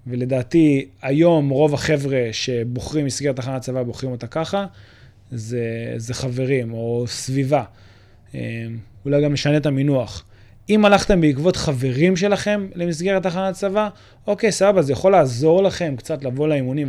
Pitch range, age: 125-160 Hz, 20-39